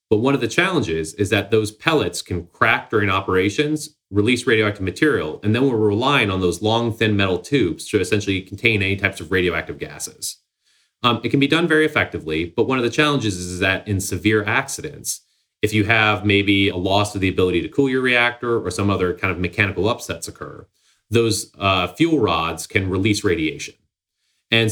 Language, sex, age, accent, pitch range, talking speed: English, male, 30-49, American, 95-130 Hz, 195 wpm